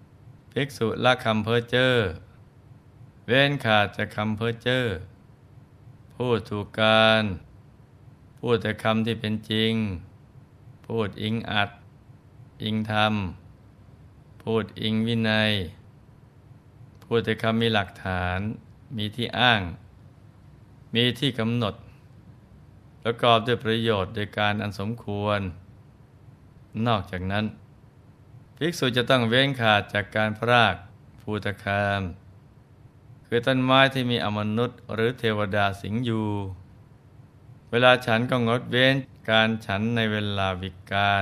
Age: 20-39